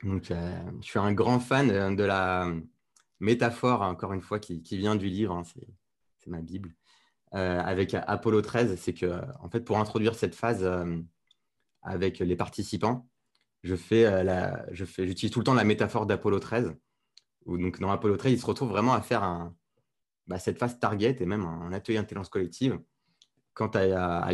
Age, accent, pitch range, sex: 20-39, French, 90-115 Hz, male